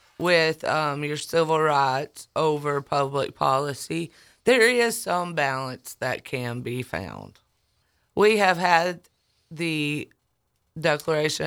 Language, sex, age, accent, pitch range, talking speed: English, female, 30-49, American, 145-205 Hz, 110 wpm